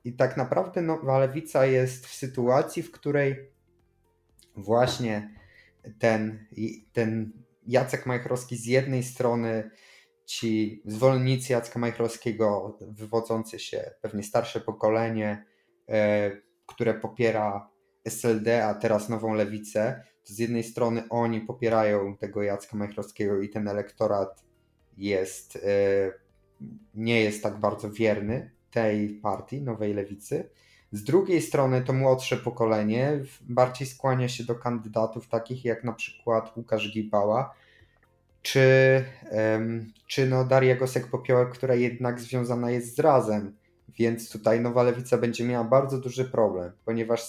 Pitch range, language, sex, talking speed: 105-125 Hz, Polish, male, 120 wpm